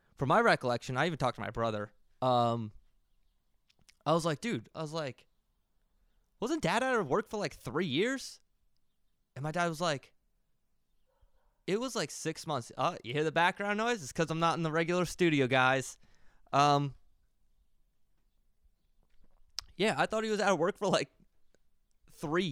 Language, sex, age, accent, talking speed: English, male, 20-39, American, 170 wpm